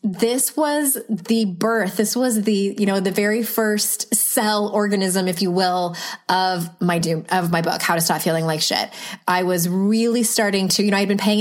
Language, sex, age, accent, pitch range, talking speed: English, female, 20-39, American, 175-215 Hz, 205 wpm